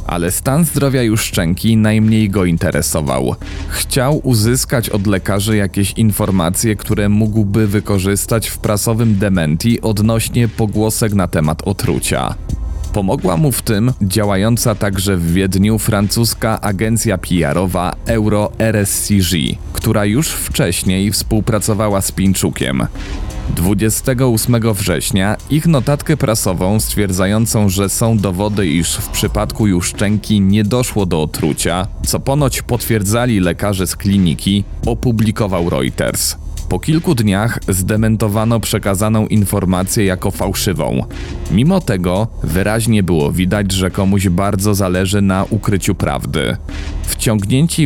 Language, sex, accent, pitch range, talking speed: Polish, male, native, 95-110 Hz, 115 wpm